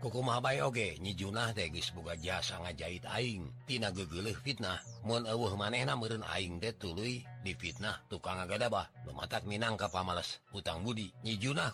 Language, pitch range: Indonesian, 90-125 Hz